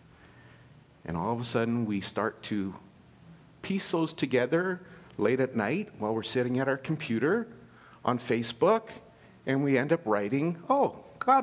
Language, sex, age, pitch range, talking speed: English, male, 50-69, 110-170 Hz, 150 wpm